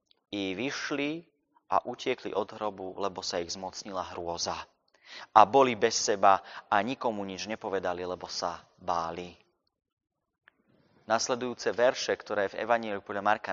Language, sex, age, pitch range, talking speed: Slovak, male, 30-49, 95-115 Hz, 125 wpm